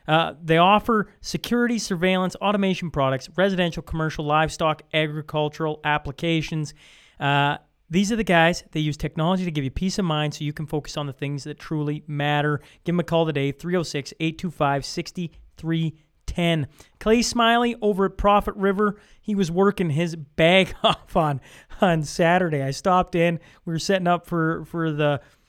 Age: 30-49